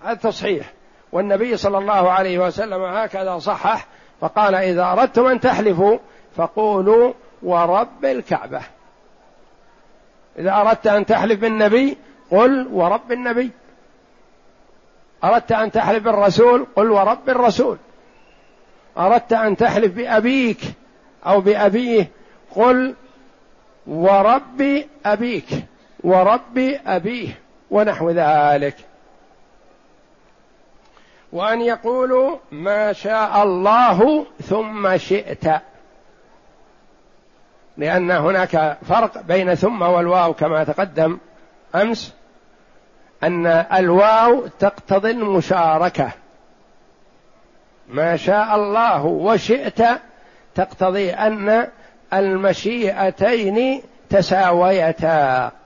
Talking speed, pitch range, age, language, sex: 80 wpm, 185-230 Hz, 60-79, Arabic, male